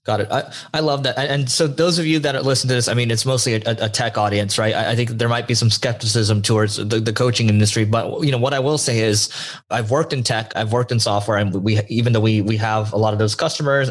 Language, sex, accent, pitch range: English, male, American, 105-125 Hz